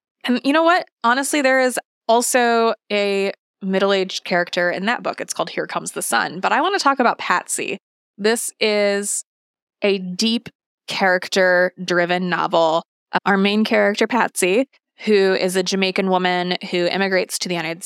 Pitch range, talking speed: 180-230 Hz, 165 wpm